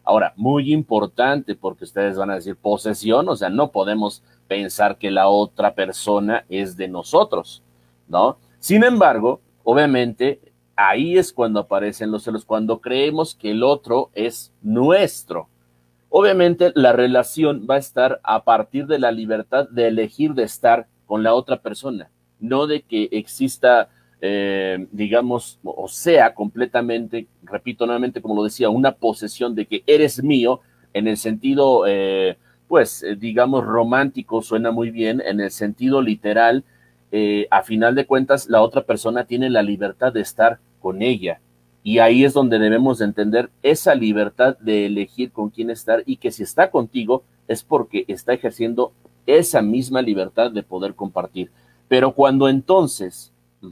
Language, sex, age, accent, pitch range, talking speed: Spanish, male, 40-59, Mexican, 100-125 Hz, 155 wpm